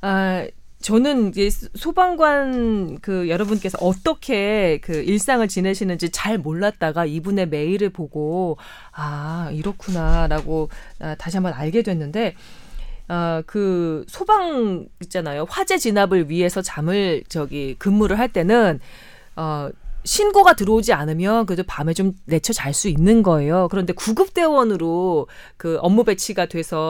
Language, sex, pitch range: Korean, female, 170-220 Hz